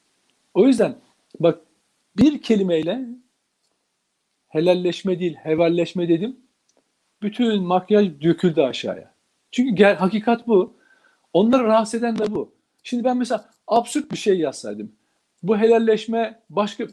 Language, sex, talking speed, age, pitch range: Turkish, male, 115 wpm, 50-69, 160-235 Hz